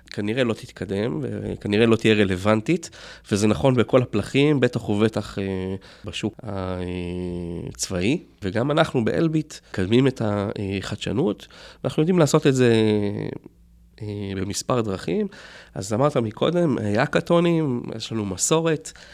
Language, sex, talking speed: Hebrew, male, 115 wpm